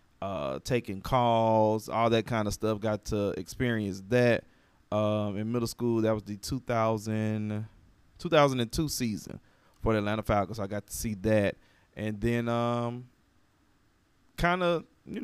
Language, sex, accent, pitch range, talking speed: English, male, American, 105-120 Hz, 140 wpm